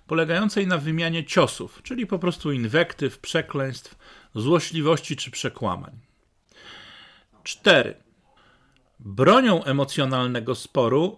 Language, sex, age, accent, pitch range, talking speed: Polish, male, 40-59, native, 130-175 Hz, 85 wpm